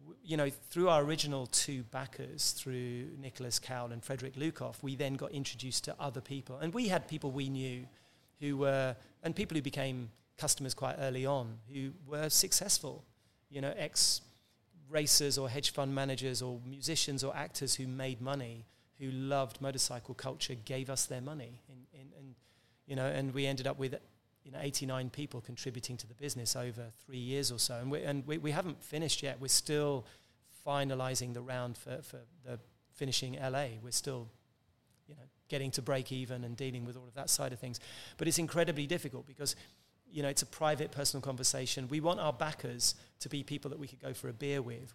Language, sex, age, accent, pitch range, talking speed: English, male, 30-49, British, 125-145 Hz, 195 wpm